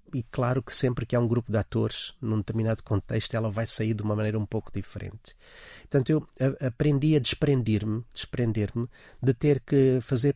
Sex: male